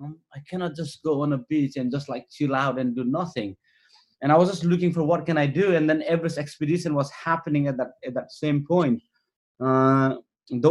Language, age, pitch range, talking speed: English, 20-39, 135-160 Hz, 220 wpm